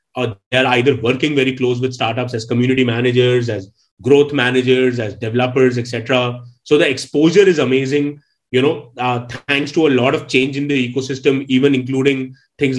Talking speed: 175 wpm